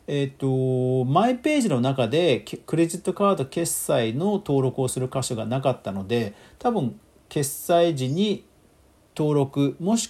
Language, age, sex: Japanese, 40-59, male